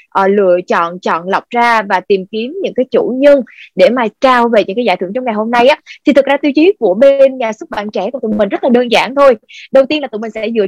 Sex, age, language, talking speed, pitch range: female, 20-39, Vietnamese, 290 wpm, 205-275 Hz